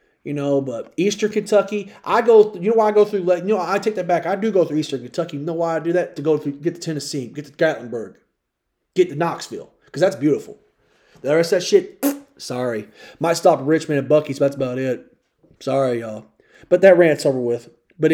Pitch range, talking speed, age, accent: 140-195 Hz, 230 wpm, 30-49, American